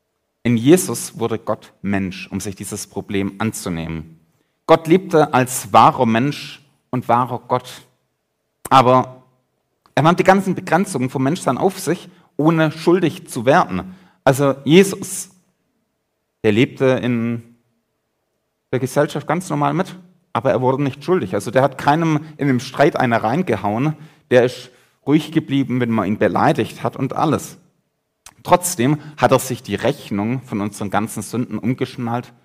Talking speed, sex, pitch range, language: 145 wpm, male, 110-145 Hz, German